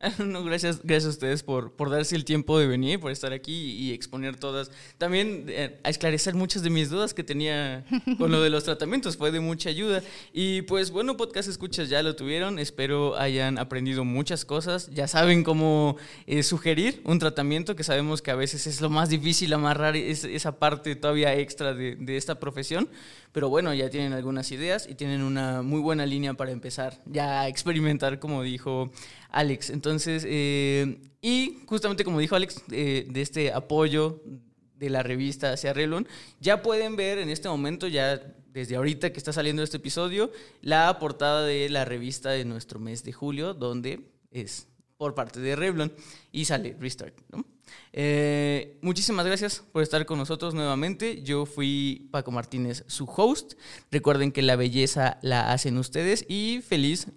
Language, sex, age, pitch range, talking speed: Spanish, male, 20-39, 135-160 Hz, 175 wpm